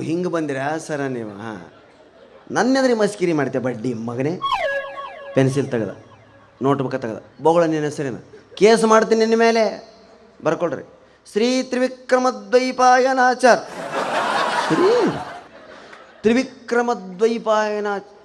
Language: Kannada